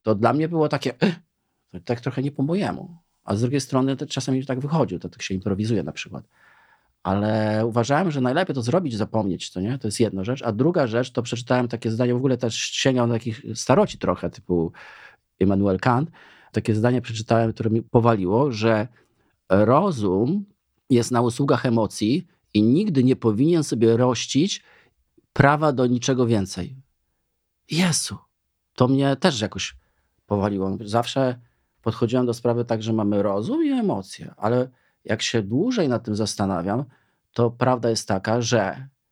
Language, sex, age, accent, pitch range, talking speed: Polish, male, 40-59, native, 110-130 Hz, 165 wpm